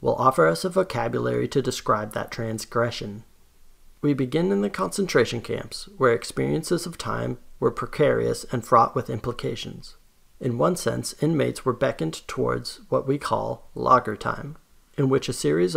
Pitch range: 115-140 Hz